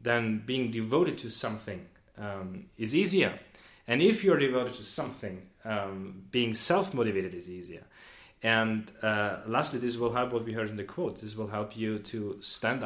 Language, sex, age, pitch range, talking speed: English, male, 30-49, 105-130 Hz, 175 wpm